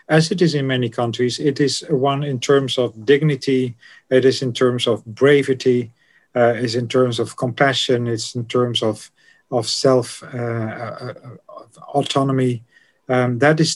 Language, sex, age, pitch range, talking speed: English, male, 50-69, 115-135 Hz, 155 wpm